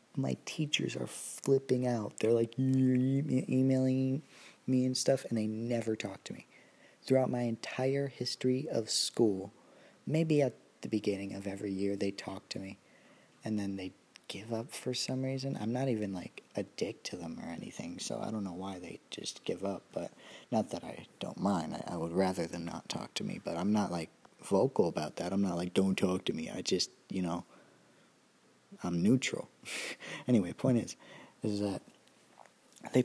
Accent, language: American, English